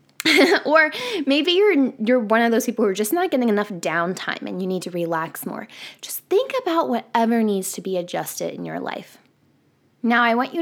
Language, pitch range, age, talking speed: English, 200-295 Hz, 10-29, 205 wpm